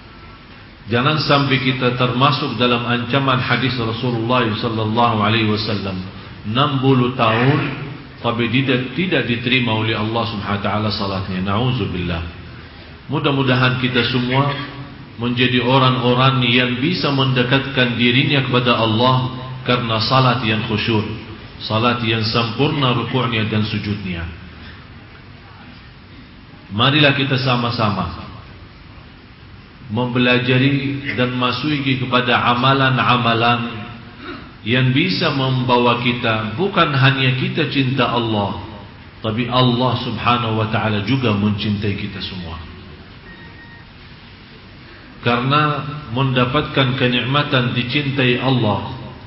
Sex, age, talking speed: male, 40-59, 90 wpm